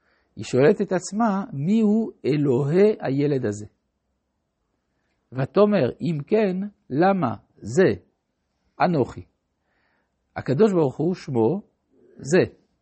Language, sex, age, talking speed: Hebrew, male, 60-79, 90 wpm